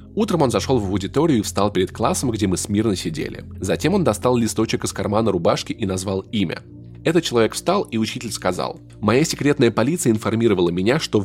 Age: 20-39